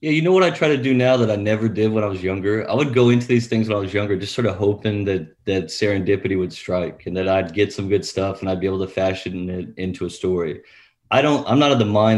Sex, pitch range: male, 95-115 Hz